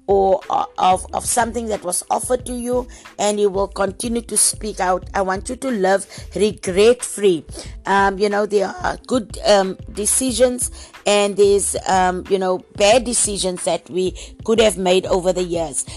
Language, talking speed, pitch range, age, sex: English, 175 wpm, 185-220 Hz, 60-79, female